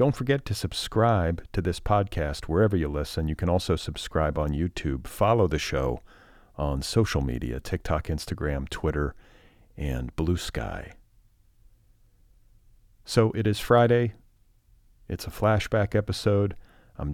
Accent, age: American, 40-59